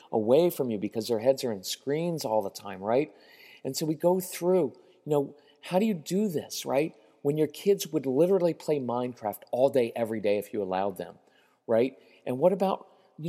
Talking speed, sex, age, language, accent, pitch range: 210 wpm, male, 40-59, English, American, 130-180 Hz